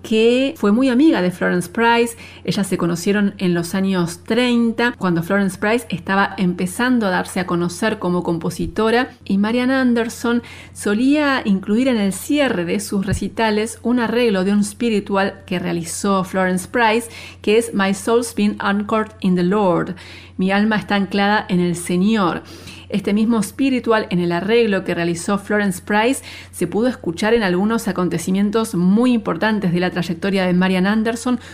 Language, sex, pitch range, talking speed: Spanish, female, 180-225 Hz, 160 wpm